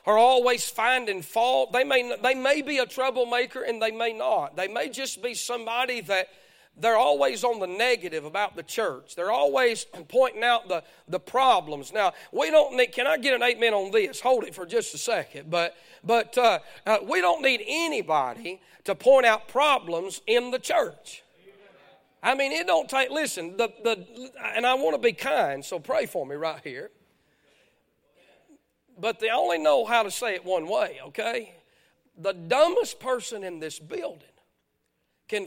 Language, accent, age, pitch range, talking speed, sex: English, American, 40-59, 190-265 Hz, 180 wpm, male